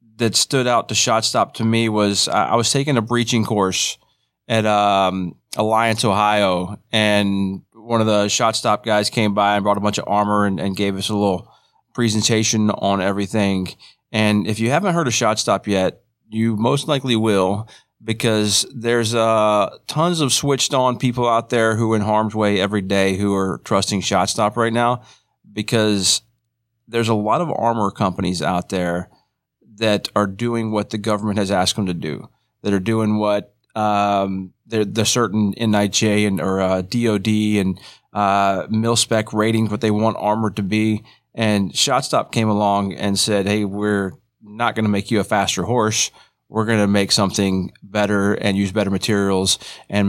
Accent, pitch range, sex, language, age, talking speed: American, 100-115 Hz, male, English, 30-49, 175 wpm